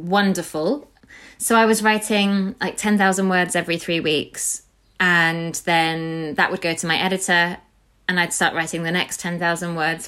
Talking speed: 160 wpm